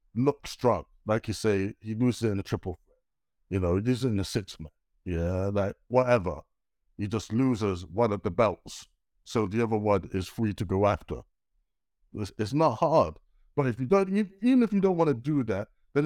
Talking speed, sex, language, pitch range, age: 200 wpm, male, English, 105-130 Hz, 60-79